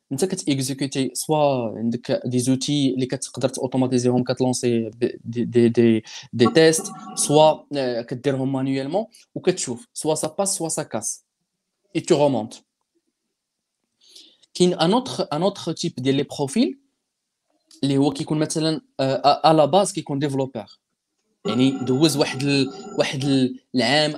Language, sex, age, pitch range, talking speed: Arabic, male, 20-39, 130-195 Hz, 135 wpm